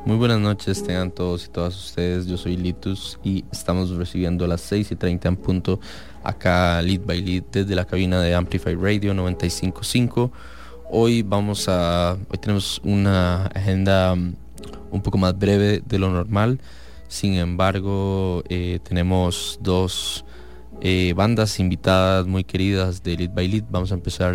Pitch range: 90-100 Hz